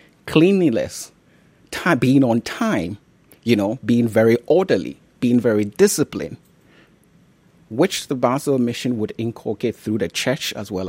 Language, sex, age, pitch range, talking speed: German, male, 30-49, 95-125 Hz, 130 wpm